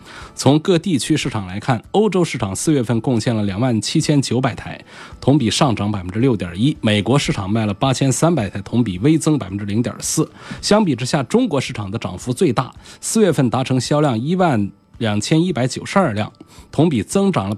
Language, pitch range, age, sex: Chinese, 110-150 Hz, 20-39, male